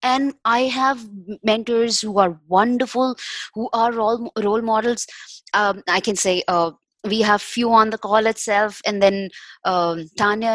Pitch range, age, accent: 195-230 Hz, 20-39, Indian